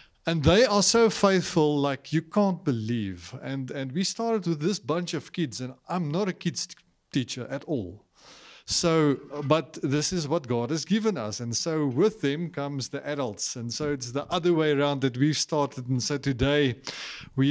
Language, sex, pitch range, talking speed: English, male, 130-165 Hz, 195 wpm